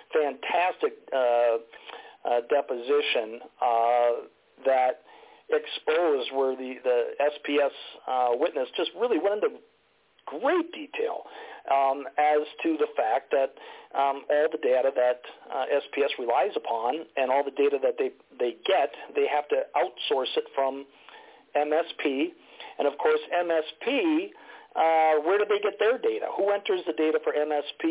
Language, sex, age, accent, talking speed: English, male, 50-69, American, 140 wpm